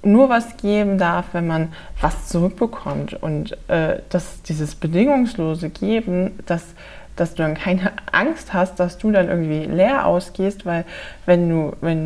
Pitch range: 165-205 Hz